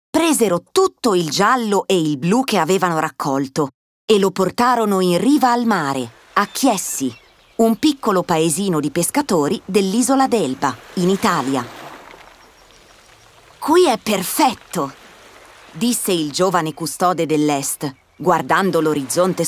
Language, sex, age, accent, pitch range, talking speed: Italian, female, 30-49, native, 155-245 Hz, 115 wpm